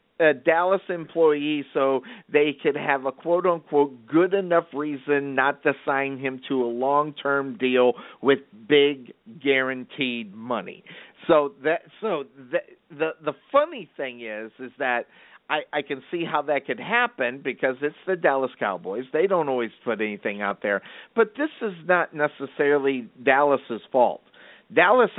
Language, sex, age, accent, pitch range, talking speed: English, male, 50-69, American, 135-170 Hz, 150 wpm